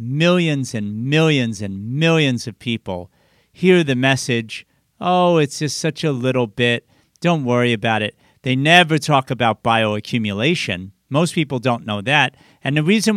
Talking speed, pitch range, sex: 155 wpm, 120-165 Hz, male